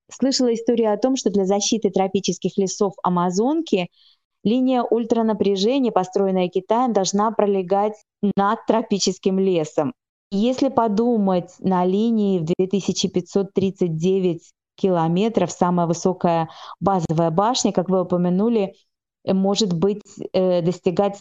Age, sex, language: 20-39, female, Russian